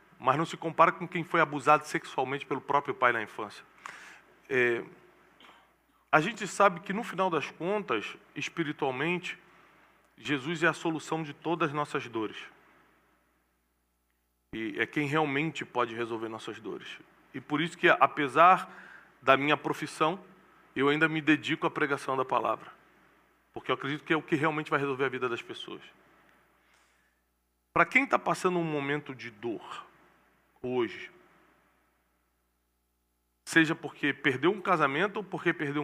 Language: Portuguese